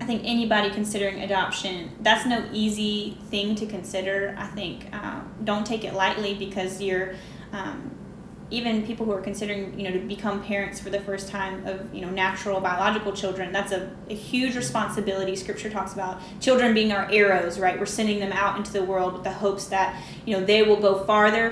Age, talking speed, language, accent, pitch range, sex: 10-29, 195 wpm, English, American, 195-220 Hz, female